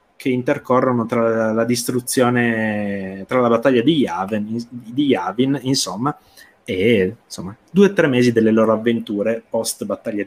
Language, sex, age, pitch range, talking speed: Italian, male, 20-39, 105-130 Hz, 125 wpm